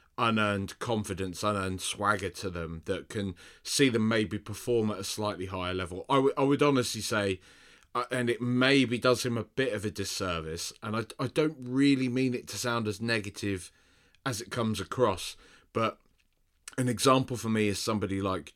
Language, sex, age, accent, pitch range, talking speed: English, male, 30-49, British, 90-120 Hz, 185 wpm